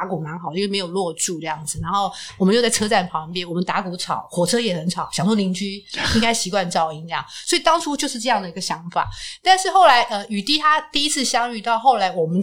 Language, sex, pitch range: Chinese, female, 175-225 Hz